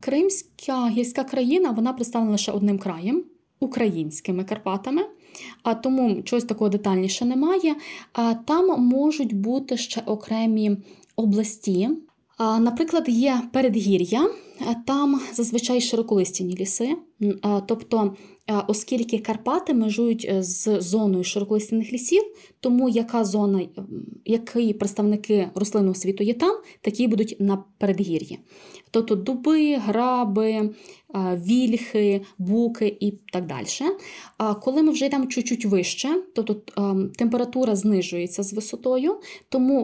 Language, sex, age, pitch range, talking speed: Ukrainian, female, 20-39, 200-255 Hz, 100 wpm